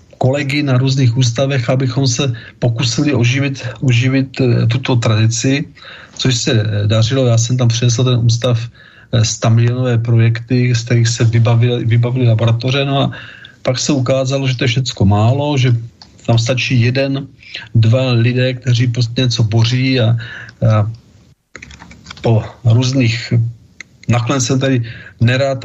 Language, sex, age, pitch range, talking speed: Czech, male, 40-59, 115-125 Hz, 135 wpm